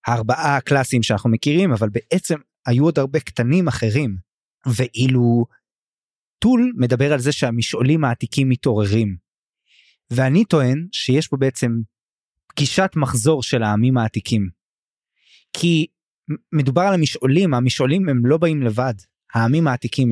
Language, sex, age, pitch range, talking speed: Hebrew, male, 20-39, 115-150 Hz, 120 wpm